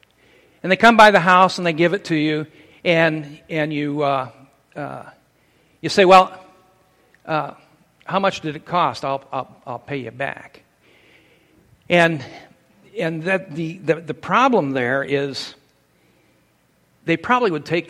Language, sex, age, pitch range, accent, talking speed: English, male, 60-79, 140-185 Hz, American, 150 wpm